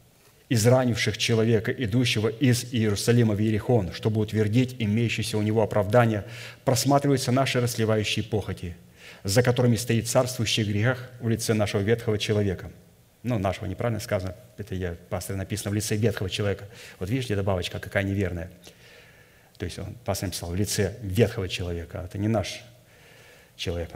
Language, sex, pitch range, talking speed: Russian, male, 105-130 Hz, 145 wpm